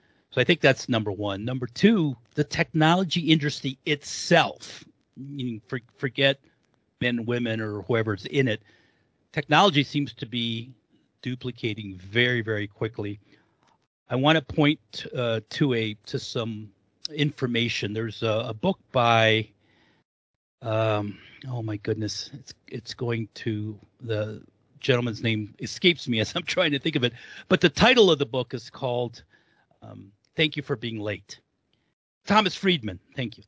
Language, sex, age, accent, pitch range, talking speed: English, male, 50-69, American, 110-145 Hz, 145 wpm